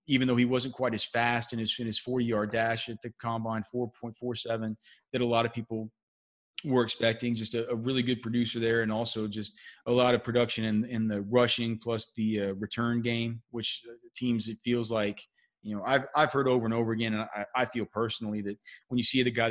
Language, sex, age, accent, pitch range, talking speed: English, male, 30-49, American, 105-120 Hz, 225 wpm